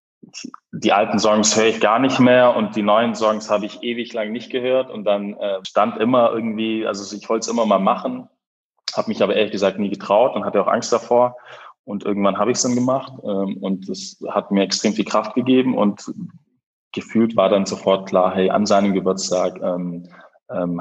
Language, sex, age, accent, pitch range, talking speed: German, male, 20-39, German, 95-120 Hz, 205 wpm